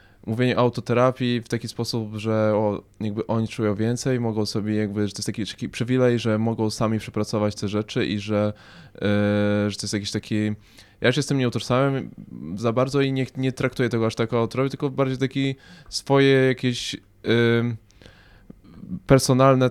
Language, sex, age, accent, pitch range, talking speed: Polish, male, 20-39, native, 110-125 Hz, 175 wpm